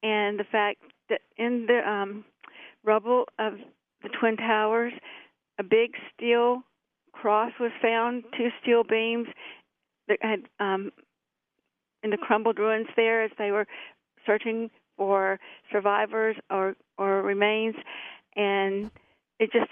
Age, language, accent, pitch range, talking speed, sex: 50-69, English, American, 210-230 Hz, 125 wpm, female